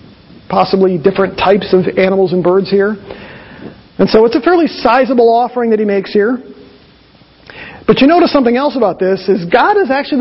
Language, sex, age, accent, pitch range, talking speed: English, male, 40-59, American, 200-275 Hz, 175 wpm